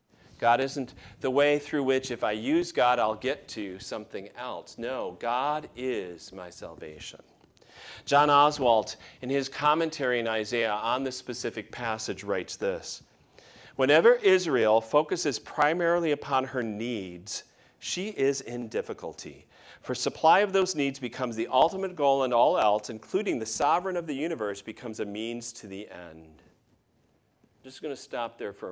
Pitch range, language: 115-150 Hz, English